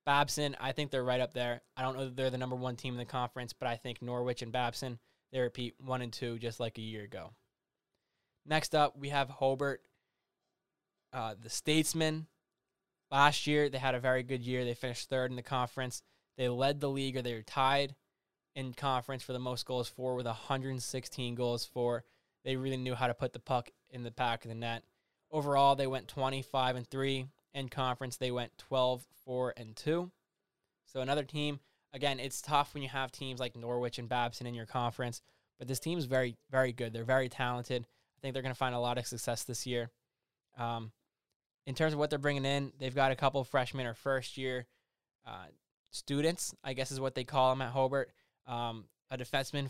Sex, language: male, English